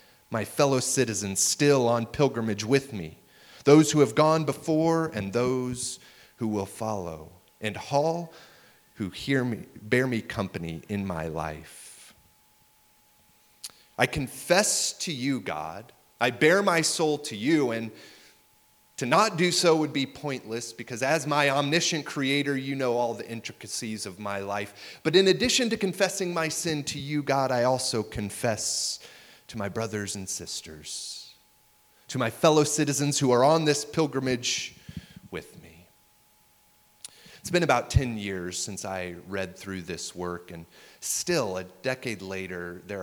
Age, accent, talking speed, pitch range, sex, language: 30-49, American, 150 wpm, 100-145 Hz, male, English